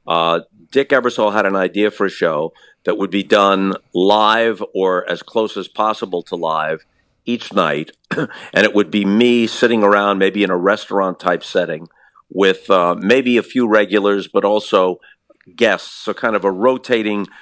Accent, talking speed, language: American, 170 wpm, English